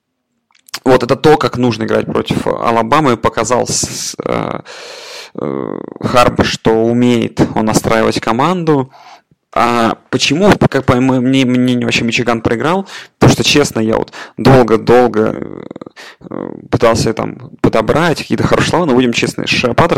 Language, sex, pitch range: Russian, male, 110-130 Hz